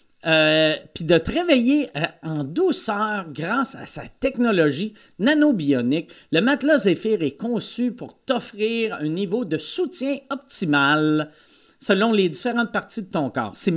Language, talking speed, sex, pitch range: French, 135 wpm, male, 165-245 Hz